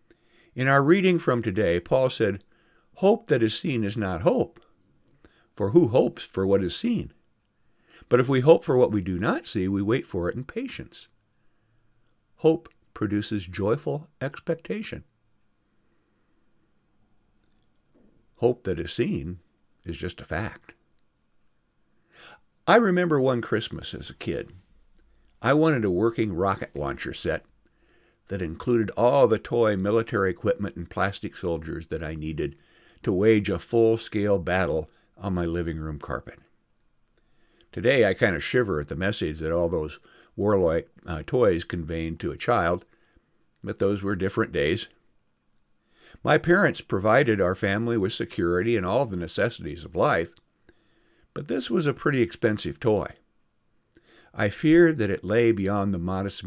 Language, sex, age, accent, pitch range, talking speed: English, male, 60-79, American, 90-115 Hz, 145 wpm